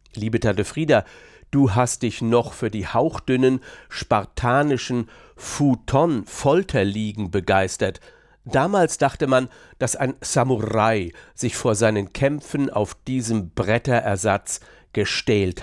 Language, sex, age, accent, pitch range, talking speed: German, male, 50-69, German, 105-135 Hz, 105 wpm